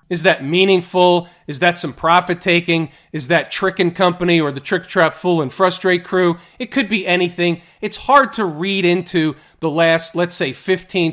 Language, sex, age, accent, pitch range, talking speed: English, male, 40-59, American, 160-200 Hz, 180 wpm